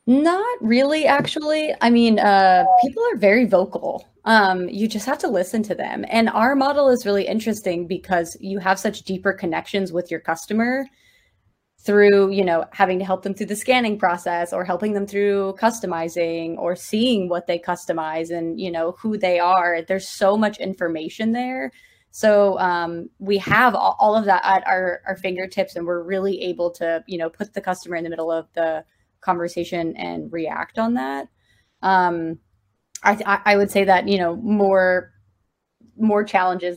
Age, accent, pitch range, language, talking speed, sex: 20-39, American, 175-210 Hz, English, 175 wpm, female